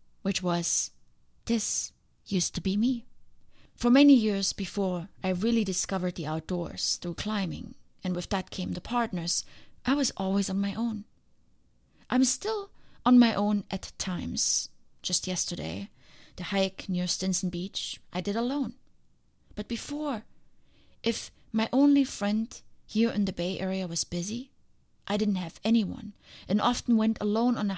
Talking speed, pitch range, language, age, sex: 150 wpm, 175-225 Hz, English, 30-49, female